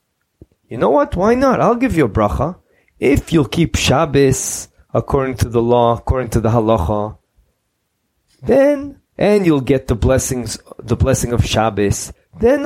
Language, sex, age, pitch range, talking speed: English, male, 20-39, 115-155 Hz, 155 wpm